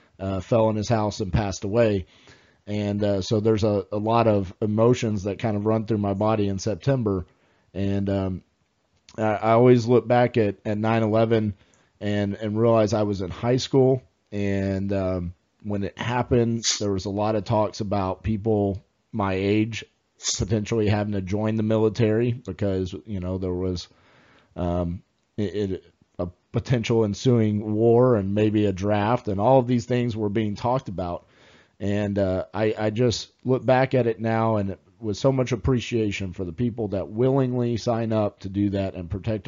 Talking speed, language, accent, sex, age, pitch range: 180 wpm, English, American, male, 40-59, 100-115 Hz